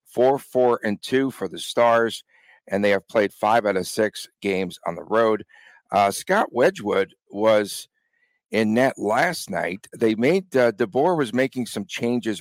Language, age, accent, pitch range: English, 50-69, American, 105-125 Hz